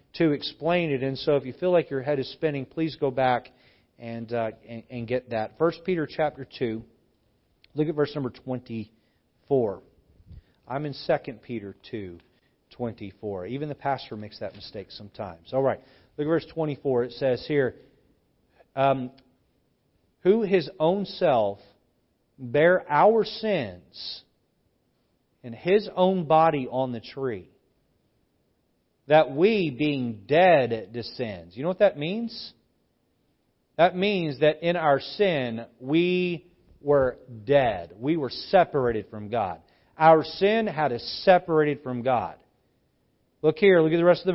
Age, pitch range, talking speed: 40-59, 120-165 Hz, 145 wpm